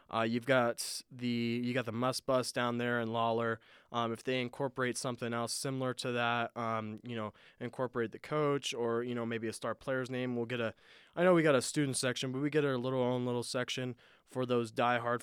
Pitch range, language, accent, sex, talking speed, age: 115-130 Hz, English, American, male, 225 wpm, 20-39